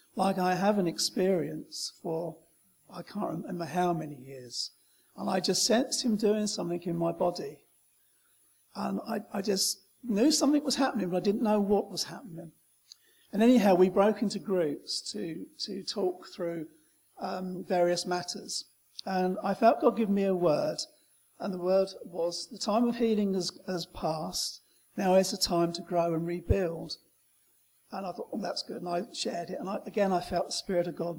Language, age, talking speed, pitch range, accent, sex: English, 50-69, 185 wpm, 175-220 Hz, British, male